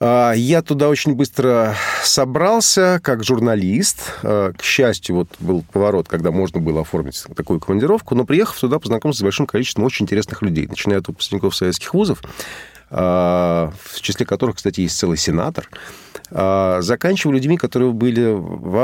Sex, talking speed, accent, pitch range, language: male, 145 wpm, native, 90-125 Hz, Russian